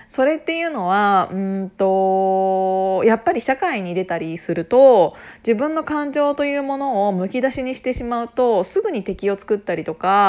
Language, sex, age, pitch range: Japanese, female, 20-39, 185-265 Hz